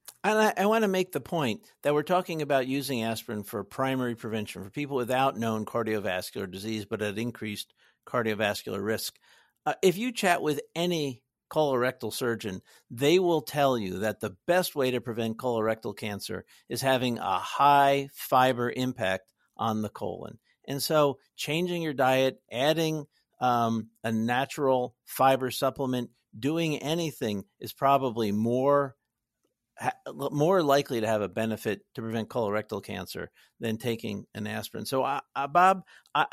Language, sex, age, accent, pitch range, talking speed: English, male, 50-69, American, 115-160 Hz, 145 wpm